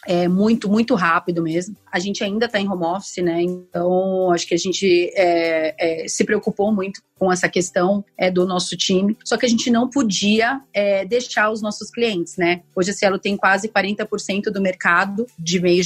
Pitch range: 190-235 Hz